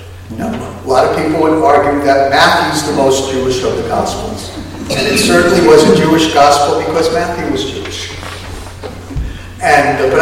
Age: 60-79